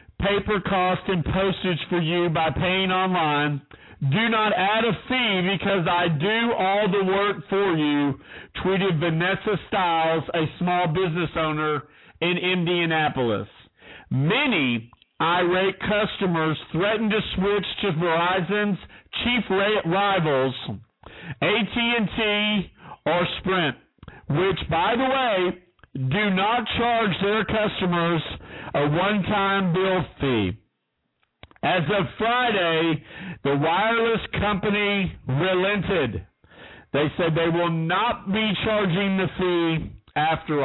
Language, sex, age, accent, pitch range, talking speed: English, male, 50-69, American, 160-210 Hz, 110 wpm